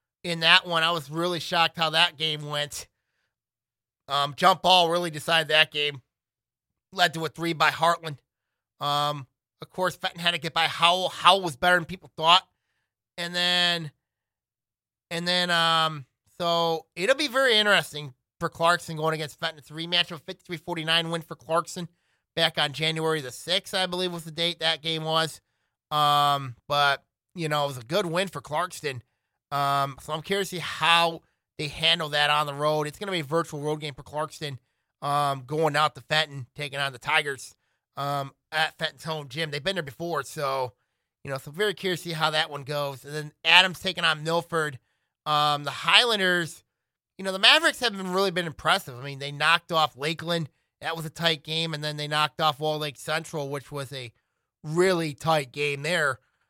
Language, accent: English, American